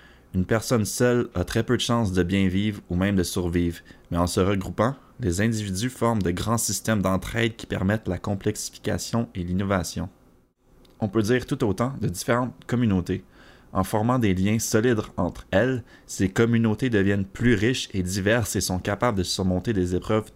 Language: English